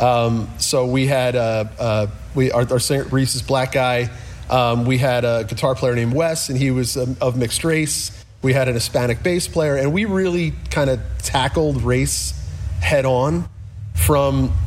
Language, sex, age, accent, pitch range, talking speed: English, male, 30-49, American, 105-130 Hz, 175 wpm